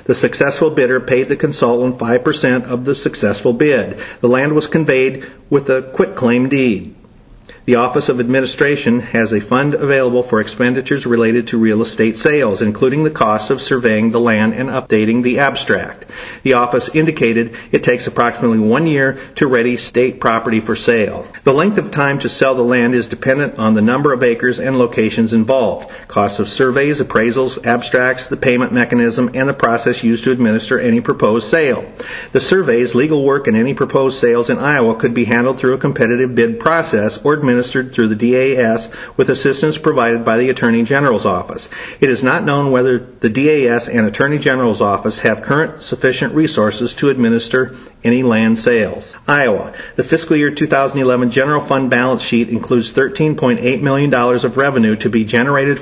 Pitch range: 120-135 Hz